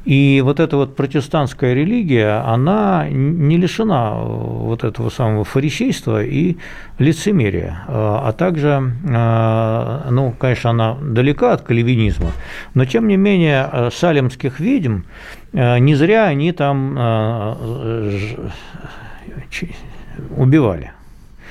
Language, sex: Russian, male